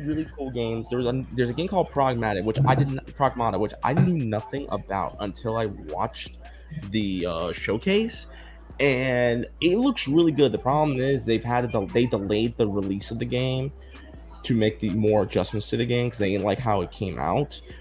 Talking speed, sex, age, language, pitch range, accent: 195 wpm, male, 20-39, English, 105-130 Hz, American